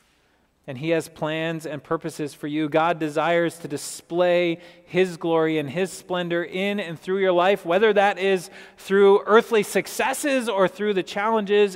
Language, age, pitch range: English, 30-49, 130-180 Hz